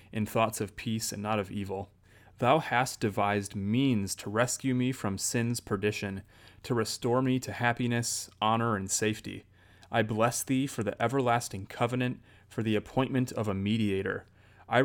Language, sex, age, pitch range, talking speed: English, male, 30-49, 100-125 Hz, 160 wpm